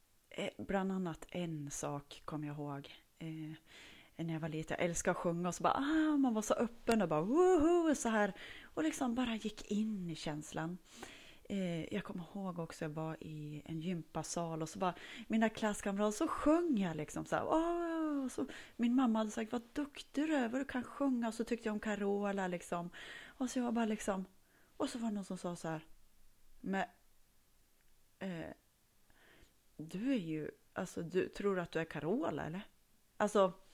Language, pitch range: Swedish, 170-260 Hz